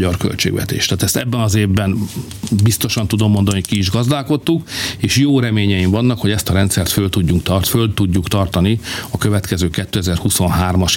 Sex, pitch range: male, 100-120 Hz